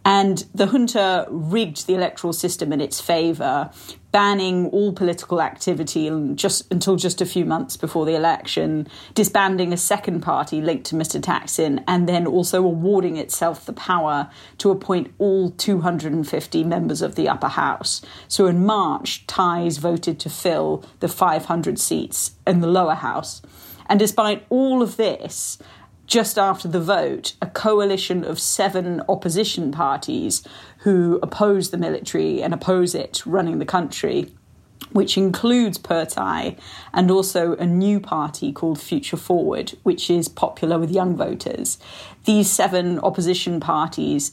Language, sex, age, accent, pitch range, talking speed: English, female, 40-59, British, 165-195 Hz, 145 wpm